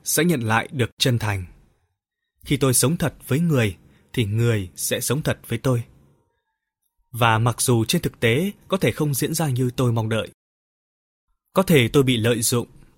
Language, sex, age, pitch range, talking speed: Vietnamese, male, 20-39, 105-150 Hz, 185 wpm